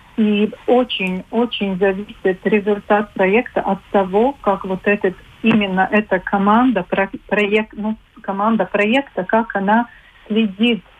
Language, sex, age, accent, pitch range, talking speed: Russian, female, 40-59, native, 185-215 Hz, 110 wpm